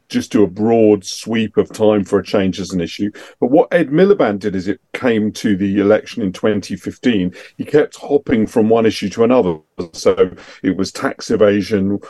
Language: English